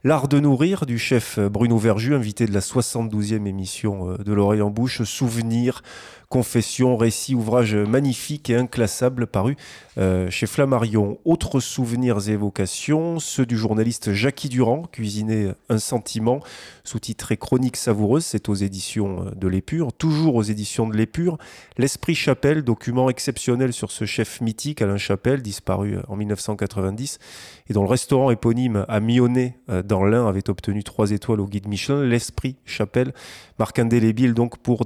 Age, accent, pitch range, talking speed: 20-39, French, 105-125 Hz, 150 wpm